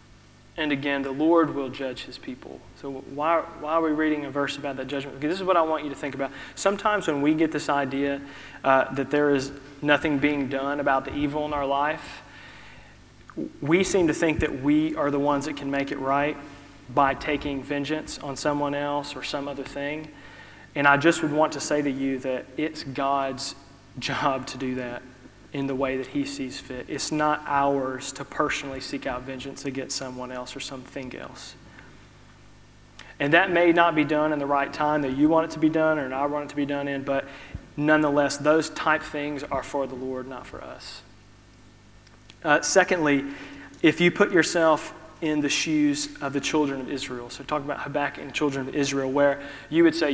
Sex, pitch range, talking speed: male, 135-150 Hz, 205 wpm